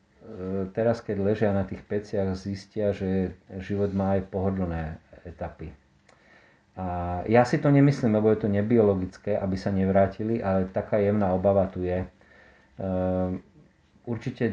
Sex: male